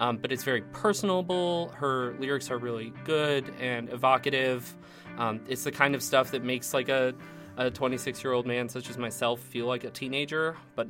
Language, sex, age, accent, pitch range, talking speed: English, male, 20-39, American, 110-150 Hz, 180 wpm